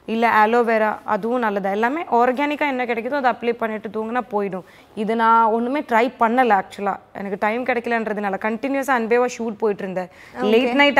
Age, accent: 20-39, native